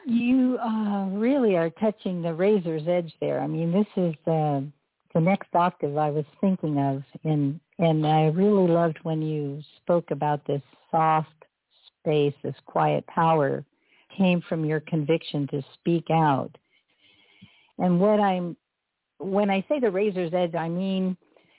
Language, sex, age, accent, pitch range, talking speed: English, female, 60-79, American, 155-195 Hz, 155 wpm